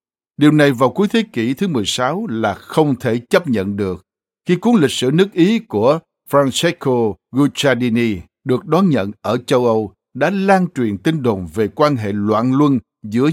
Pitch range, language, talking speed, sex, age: 110-145 Hz, Vietnamese, 180 wpm, male, 60-79